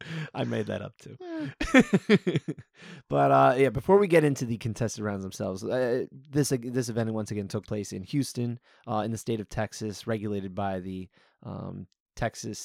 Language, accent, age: English, American, 30-49